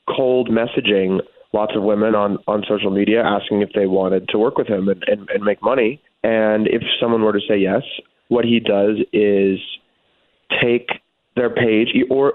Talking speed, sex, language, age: 180 wpm, male, English, 20-39